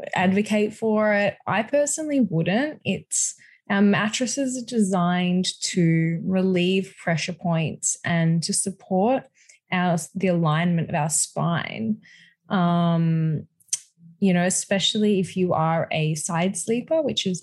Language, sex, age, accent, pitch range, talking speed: English, female, 20-39, Australian, 160-190 Hz, 125 wpm